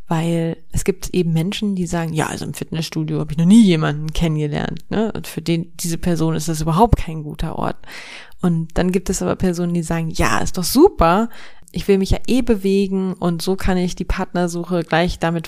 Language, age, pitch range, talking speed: German, 20-39, 165-185 Hz, 215 wpm